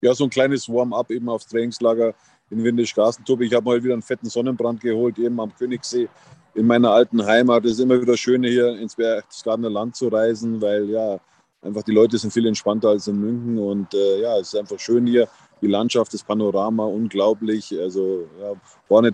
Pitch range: 110-125 Hz